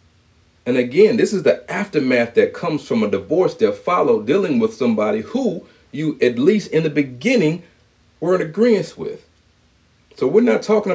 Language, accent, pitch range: English, American, 110-180 Hz